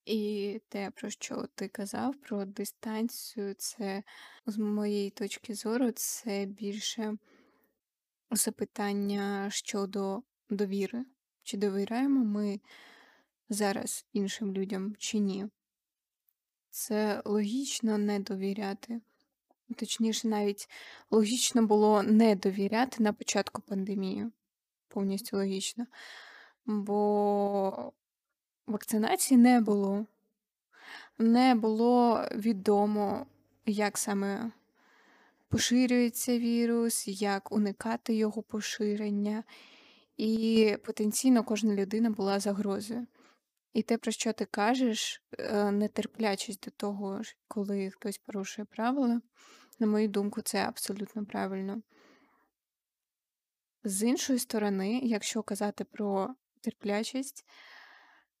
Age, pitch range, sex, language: 20-39, 205-235 Hz, female, Ukrainian